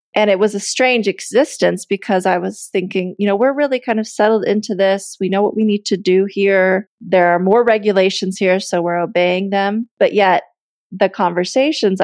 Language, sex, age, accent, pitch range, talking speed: English, female, 30-49, American, 180-210 Hz, 200 wpm